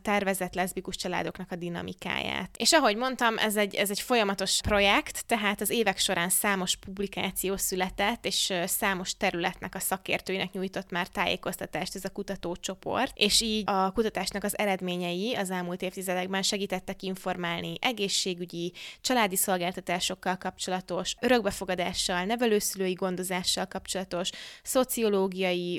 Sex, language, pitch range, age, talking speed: female, Hungarian, 185-210 Hz, 20-39, 120 wpm